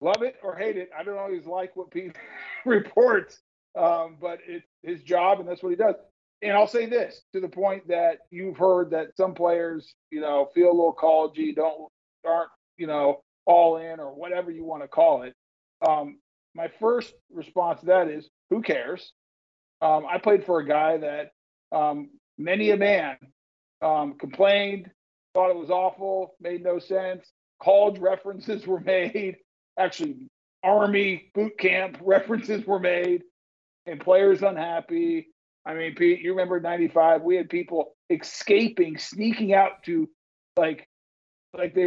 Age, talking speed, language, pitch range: 50-69, 160 wpm, English, 170-225 Hz